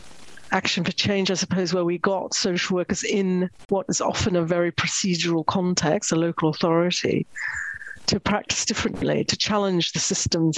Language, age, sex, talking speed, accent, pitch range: English, 50-69, female, 160 wpm, British, 175-200 Hz